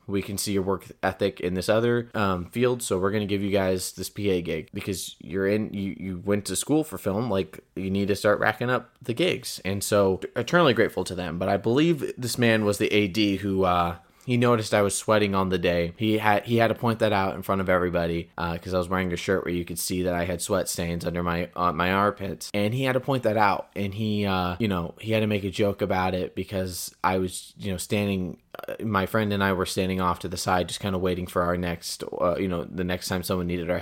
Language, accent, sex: English, American, male